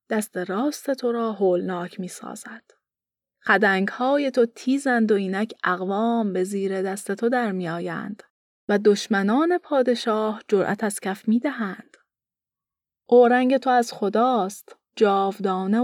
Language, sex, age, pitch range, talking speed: Persian, female, 30-49, 195-250 Hz, 115 wpm